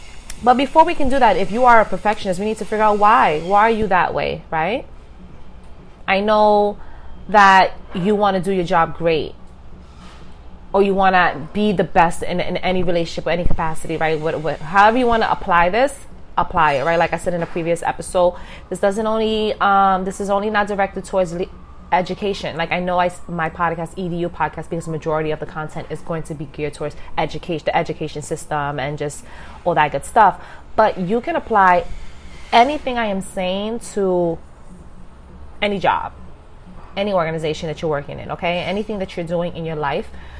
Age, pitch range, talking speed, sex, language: 20-39, 155-200 Hz, 190 wpm, female, English